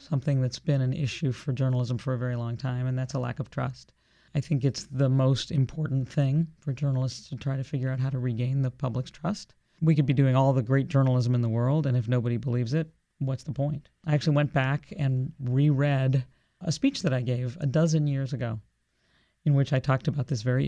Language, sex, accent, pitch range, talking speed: English, male, American, 125-145 Hz, 230 wpm